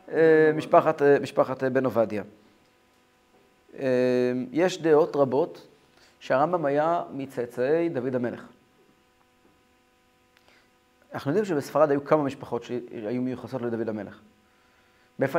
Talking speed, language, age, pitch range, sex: 90 wpm, Hebrew, 30-49, 120-170 Hz, male